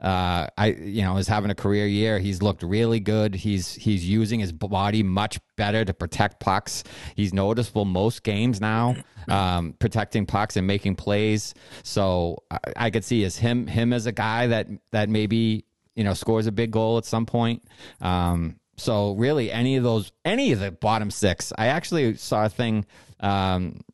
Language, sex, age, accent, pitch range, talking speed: English, male, 30-49, American, 90-110 Hz, 185 wpm